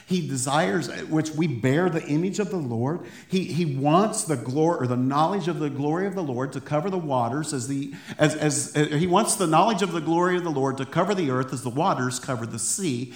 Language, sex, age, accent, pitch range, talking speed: English, male, 50-69, American, 140-185 Hz, 235 wpm